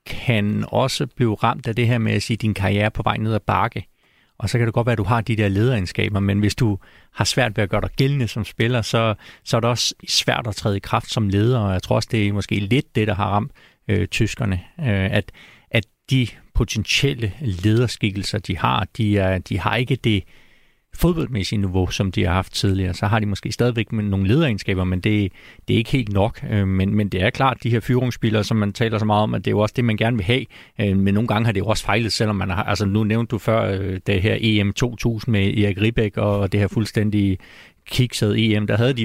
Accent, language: native, Danish